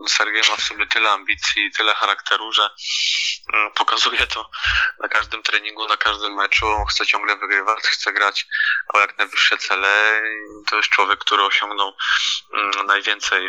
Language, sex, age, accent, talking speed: Polish, male, 20-39, native, 145 wpm